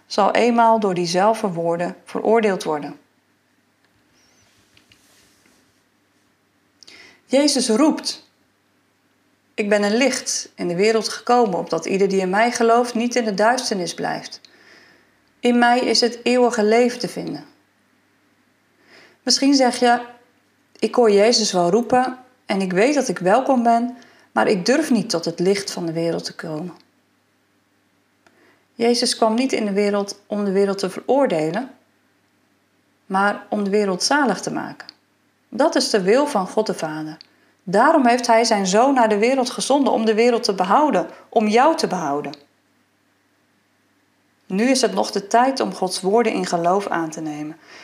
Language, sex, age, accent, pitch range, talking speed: Dutch, female, 40-59, Dutch, 190-245 Hz, 150 wpm